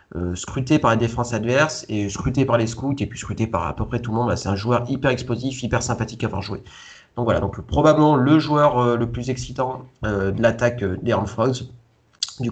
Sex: male